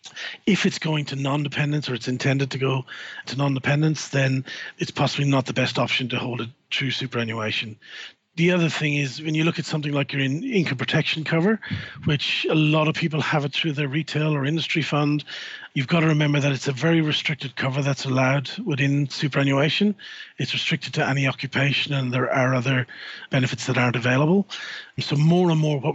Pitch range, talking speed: 130-155 Hz, 190 wpm